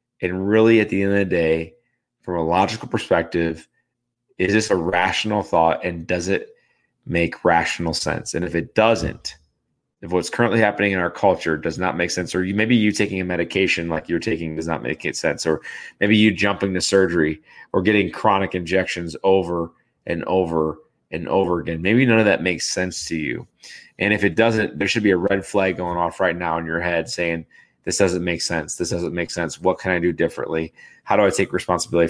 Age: 30-49